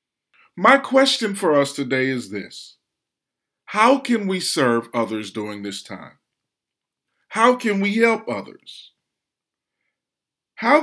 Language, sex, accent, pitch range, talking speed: English, male, American, 135-225 Hz, 115 wpm